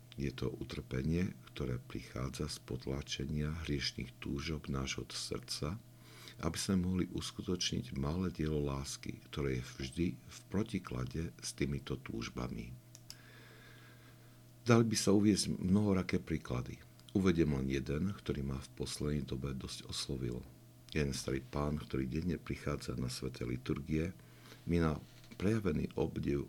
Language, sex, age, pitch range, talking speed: Slovak, male, 60-79, 70-110 Hz, 125 wpm